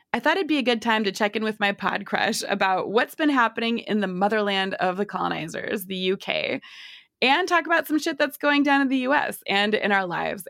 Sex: female